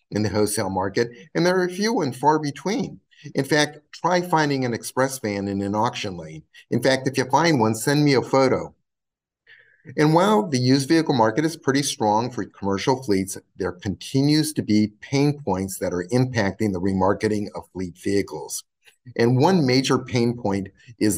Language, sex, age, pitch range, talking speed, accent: English, male, 50-69, 105-145 Hz, 185 wpm, American